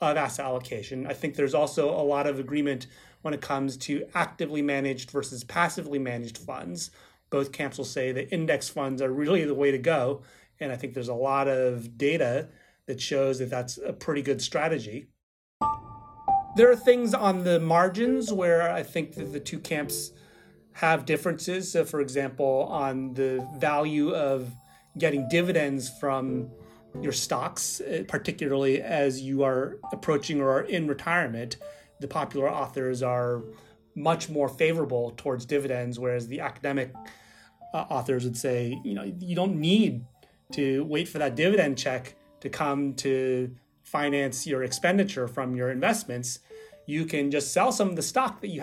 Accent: American